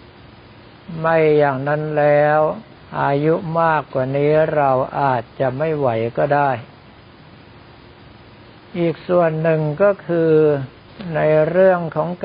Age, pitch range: 60-79, 135-155 Hz